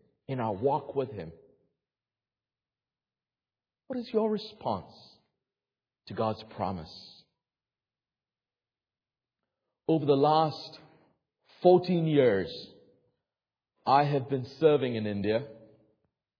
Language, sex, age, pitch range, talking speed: English, male, 50-69, 140-190 Hz, 85 wpm